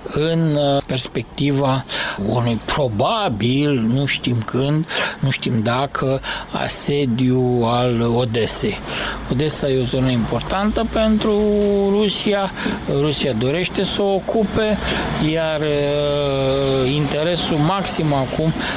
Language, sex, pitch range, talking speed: Romanian, male, 130-170 Hz, 95 wpm